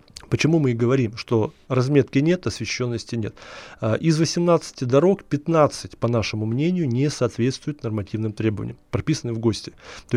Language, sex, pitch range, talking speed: Russian, male, 115-150 Hz, 140 wpm